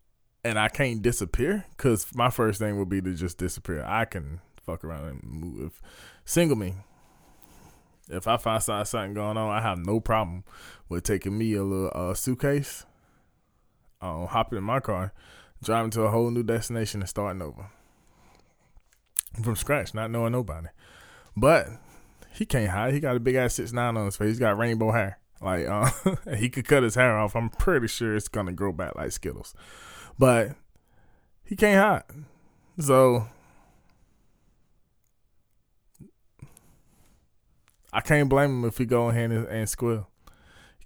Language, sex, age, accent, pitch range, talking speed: English, male, 20-39, American, 100-125 Hz, 165 wpm